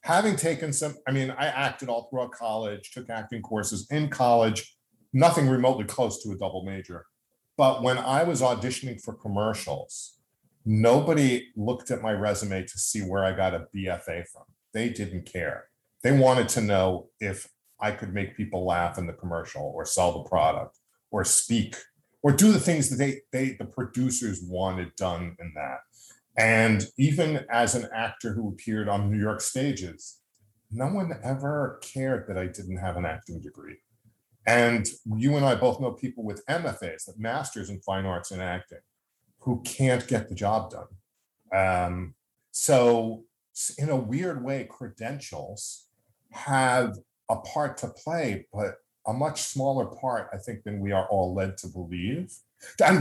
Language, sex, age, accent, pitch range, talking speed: English, male, 40-59, American, 100-130 Hz, 165 wpm